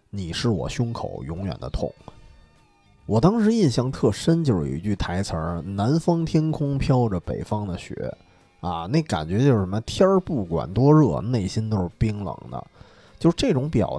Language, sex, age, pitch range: Chinese, male, 20-39, 90-150 Hz